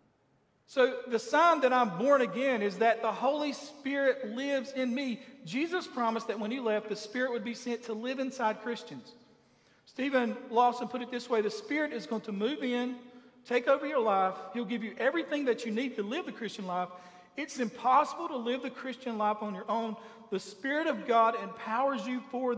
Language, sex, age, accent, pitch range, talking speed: English, male, 40-59, American, 220-255 Hz, 200 wpm